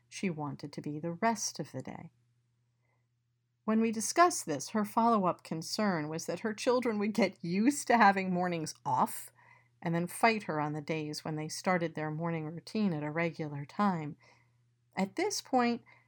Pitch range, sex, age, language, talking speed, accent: 155-205 Hz, female, 50-69, English, 175 wpm, American